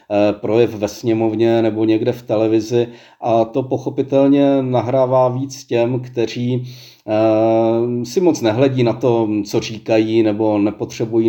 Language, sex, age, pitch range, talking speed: Czech, male, 40-59, 110-120 Hz, 130 wpm